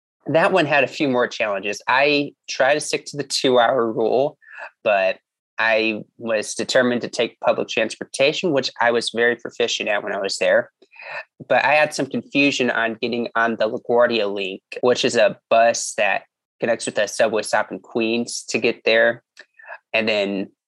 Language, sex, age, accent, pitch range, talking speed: English, male, 20-39, American, 115-130 Hz, 175 wpm